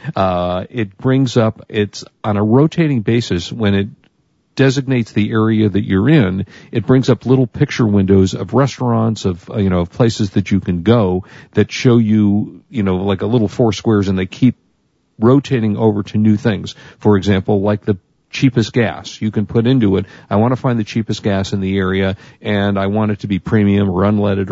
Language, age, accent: English, 50-69, American